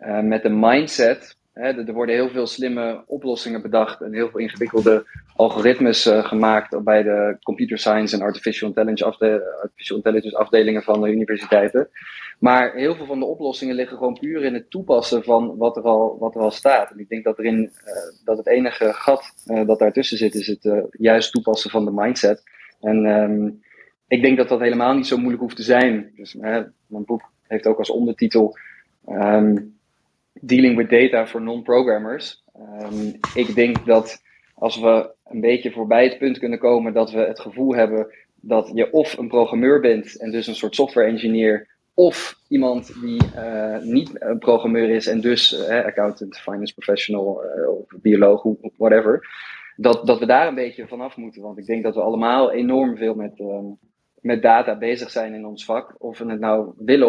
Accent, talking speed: Dutch, 175 wpm